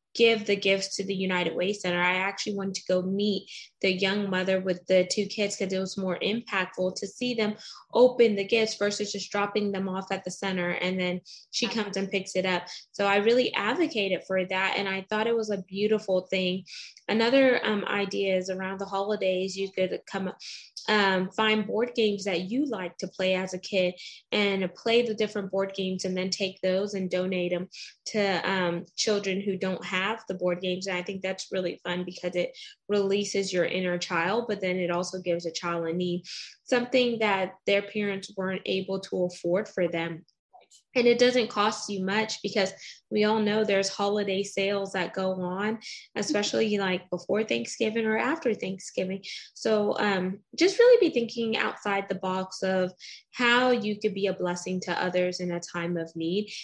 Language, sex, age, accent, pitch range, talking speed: English, female, 10-29, American, 185-210 Hz, 195 wpm